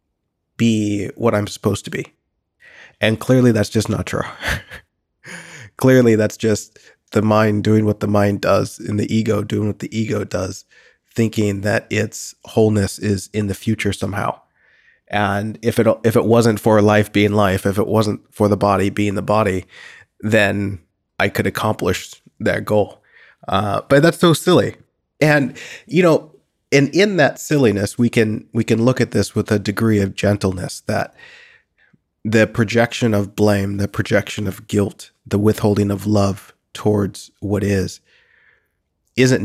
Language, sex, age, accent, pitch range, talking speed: English, male, 30-49, American, 100-115 Hz, 160 wpm